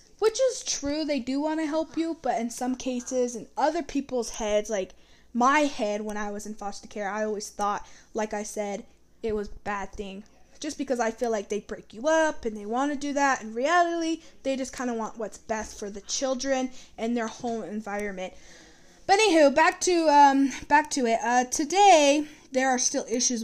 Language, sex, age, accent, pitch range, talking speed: English, female, 10-29, American, 215-270 Hz, 210 wpm